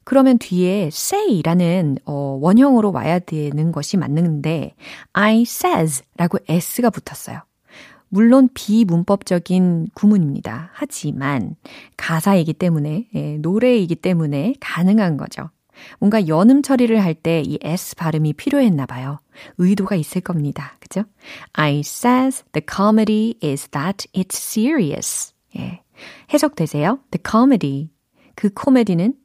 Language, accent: Korean, native